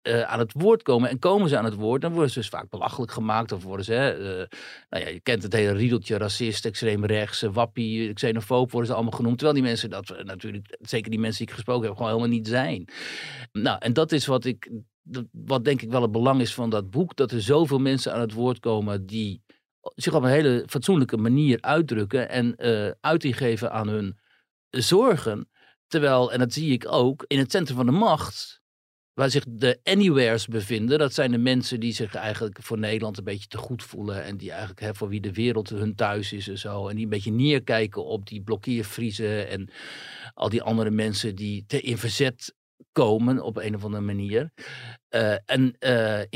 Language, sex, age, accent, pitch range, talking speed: Dutch, male, 50-69, Dutch, 110-130 Hz, 210 wpm